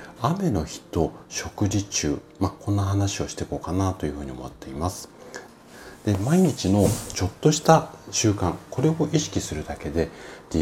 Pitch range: 80-105 Hz